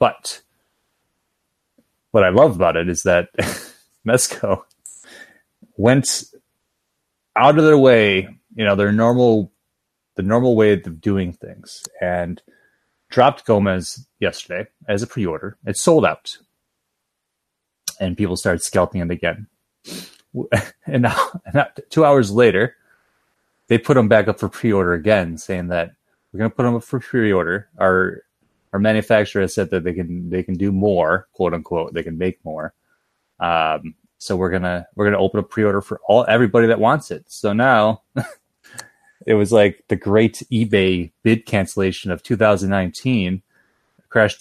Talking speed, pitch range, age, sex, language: 150 wpm, 90-110 Hz, 30-49, male, English